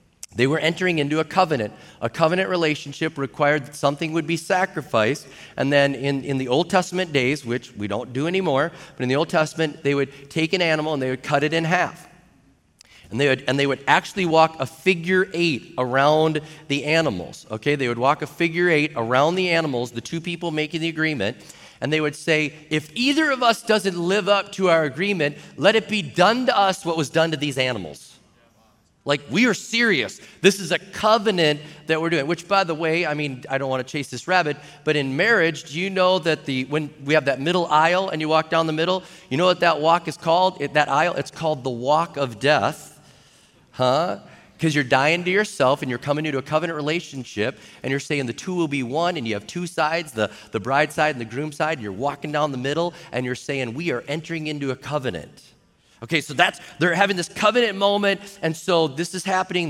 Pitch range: 140-180 Hz